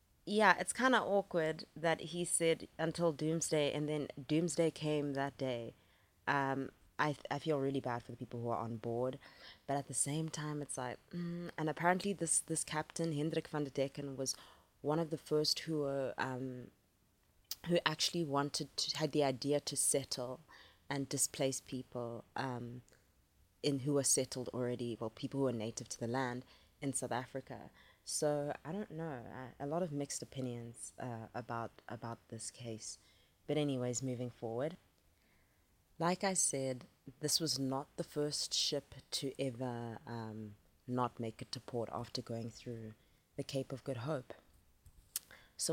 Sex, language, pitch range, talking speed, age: female, English, 120-150 Hz, 170 wpm, 20-39